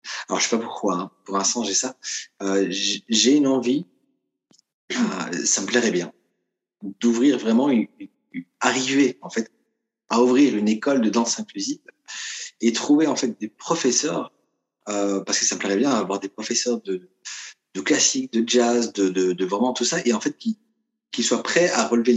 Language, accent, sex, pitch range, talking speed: French, French, male, 95-125 Hz, 180 wpm